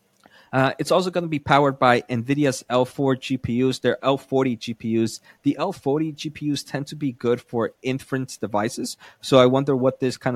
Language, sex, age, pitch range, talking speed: English, male, 30-49, 115-140 Hz, 175 wpm